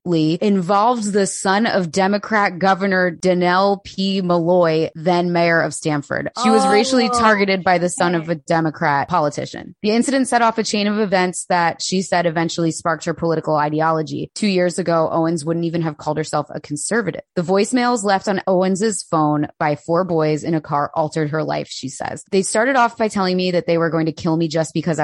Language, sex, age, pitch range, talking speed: English, female, 20-39, 155-185 Hz, 200 wpm